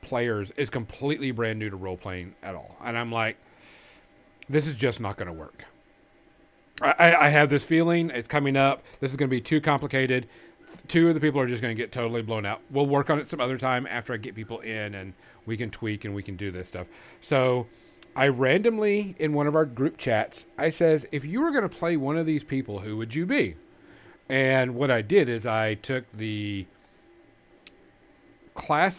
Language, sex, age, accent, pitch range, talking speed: English, male, 40-59, American, 115-145 Hz, 215 wpm